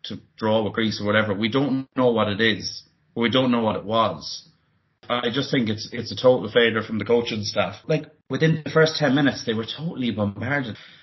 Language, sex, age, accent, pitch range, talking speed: English, male, 30-49, Irish, 105-135 Hz, 225 wpm